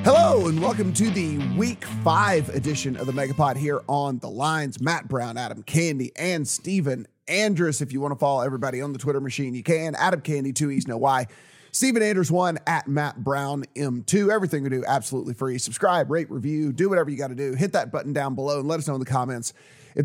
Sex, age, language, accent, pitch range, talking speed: male, 30-49, English, American, 135-170 Hz, 220 wpm